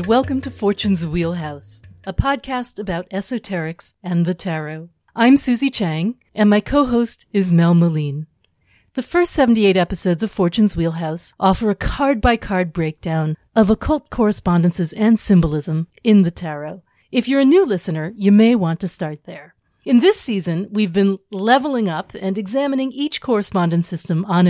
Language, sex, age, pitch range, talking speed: English, female, 40-59, 170-230 Hz, 155 wpm